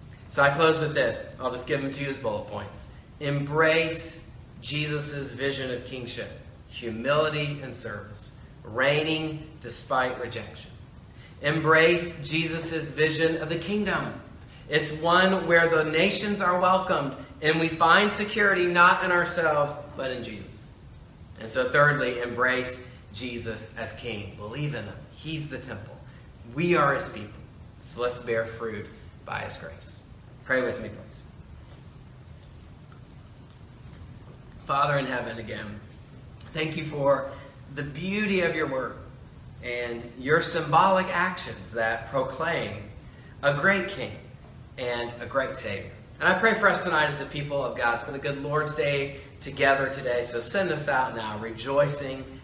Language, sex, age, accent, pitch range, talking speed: English, male, 30-49, American, 120-155 Hz, 145 wpm